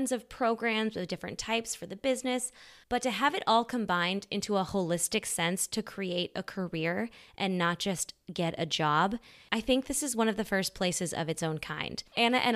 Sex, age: female, 20-39